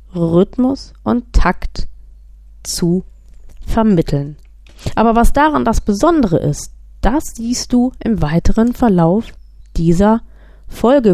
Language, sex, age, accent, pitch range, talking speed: German, female, 20-39, German, 175-235 Hz, 100 wpm